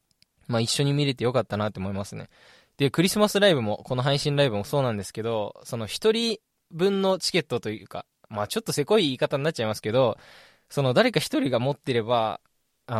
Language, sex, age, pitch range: Japanese, male, 20-39, 110-150 Hz